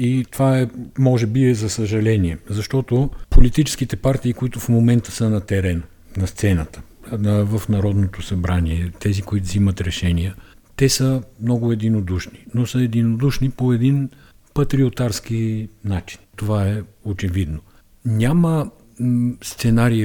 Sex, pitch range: male, 95-120 Hz